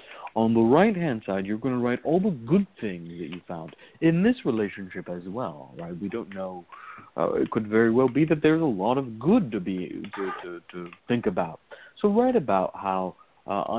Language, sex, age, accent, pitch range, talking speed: English, male, 50-69, American, 95-130 Hz, 210 wpm